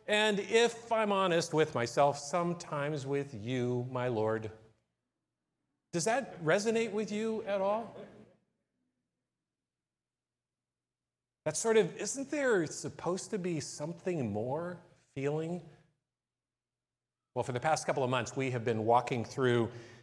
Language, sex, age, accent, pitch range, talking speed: English, male, 40-59, American, 125-190 Hz, 125 wpm